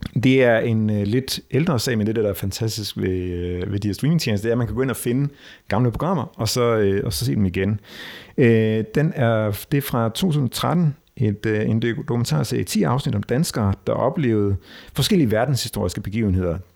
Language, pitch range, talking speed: Danish, 100-130 Hz, 210 wpm